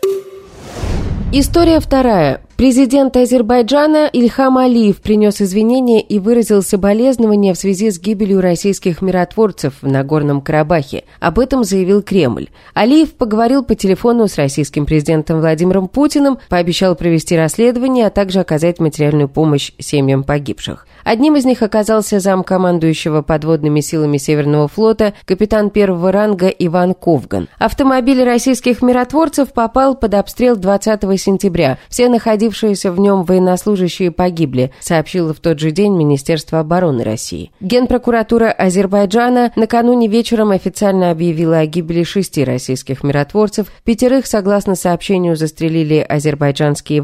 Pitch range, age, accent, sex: 160-230 Hz, 20-39, native, female